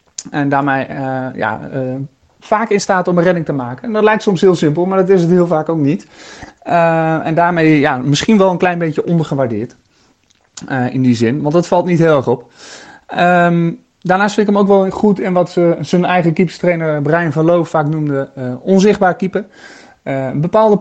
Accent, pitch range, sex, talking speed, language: Dutch, 135-180 Hz, male, 195 wpm, Dutch